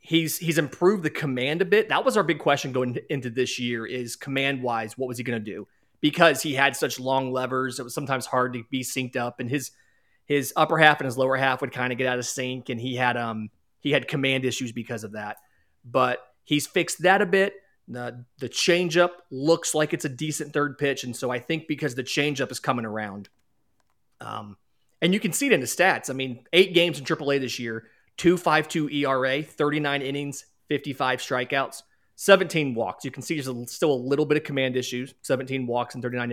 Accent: American